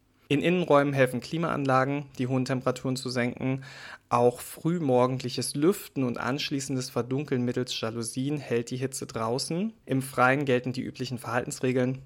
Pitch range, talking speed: 120-135 Hz, 135 wpm